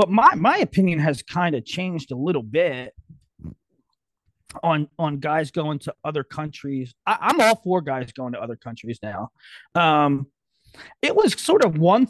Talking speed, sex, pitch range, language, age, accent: 170 wpm, male, 160-250 Hz, English, 30-49, American